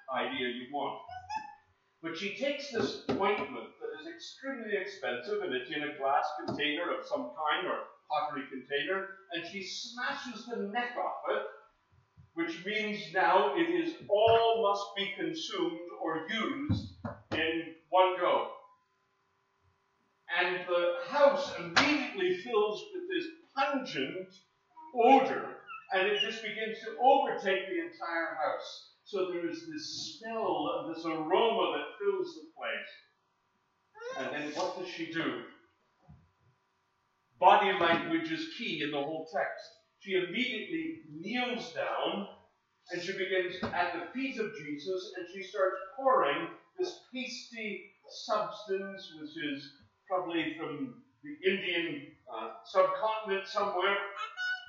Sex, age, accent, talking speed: male, 50-69, American, 130 wpm